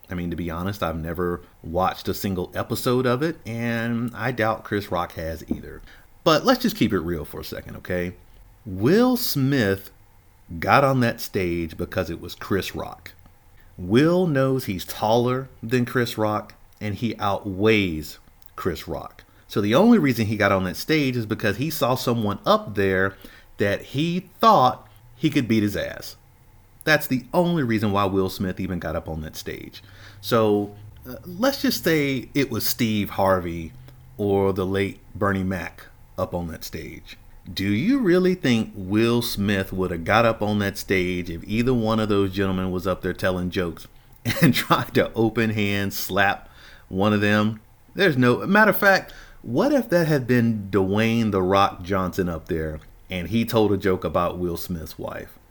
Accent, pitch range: American, 95-120 Hz